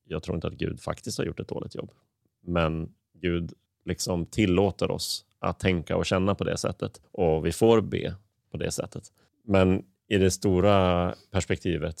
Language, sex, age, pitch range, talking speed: Swedish, male, 30-49, 85-100 Hz, 175 wpm